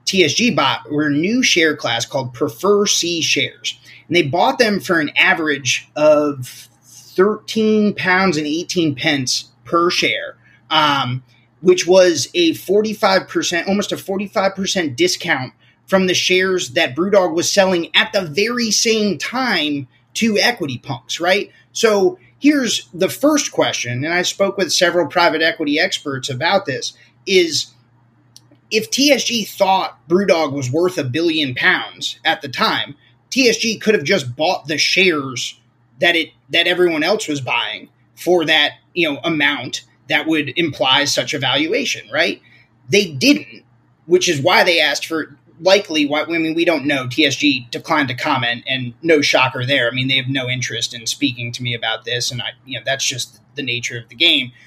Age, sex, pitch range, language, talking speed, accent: 30-49, male, 130-190 Hz, English, 165 wpm, American